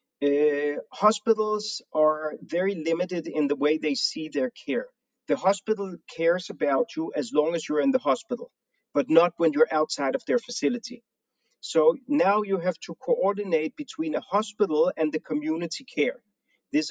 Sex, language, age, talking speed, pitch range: male, Hebrew, 40-59, 165 wpm, 155-245 Hz